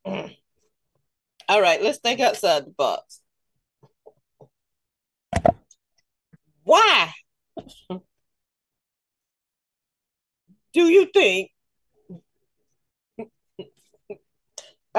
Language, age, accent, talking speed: English, 40-59, American, 50 wpm